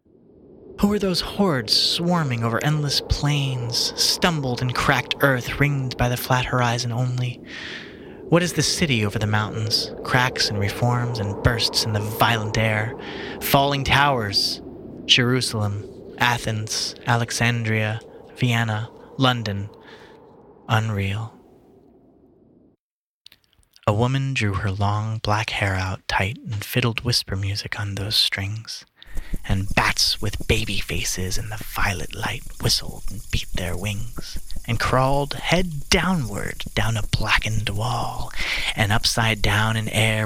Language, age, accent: English, 20-39, American